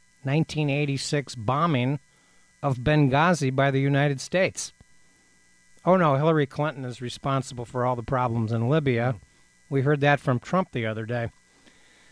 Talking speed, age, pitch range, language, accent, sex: 140 wpm, 60-79, 120-150 Hz, English, American, male